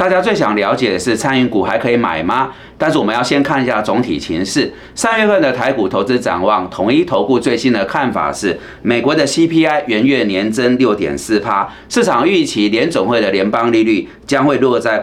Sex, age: male, 30-49